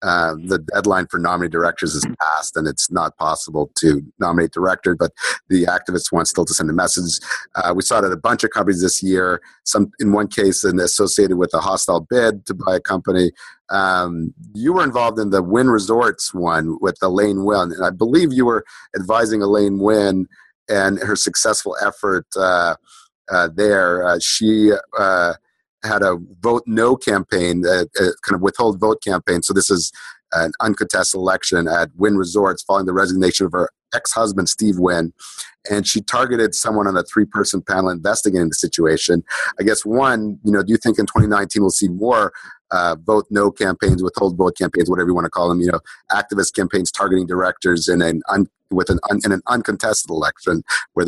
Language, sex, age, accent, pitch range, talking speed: English, male, 50-69, American, 90-105 Hz, 180 wpm